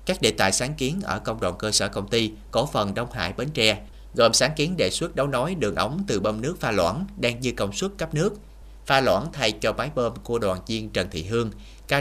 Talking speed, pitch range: 255 wpm, 95-120 Hz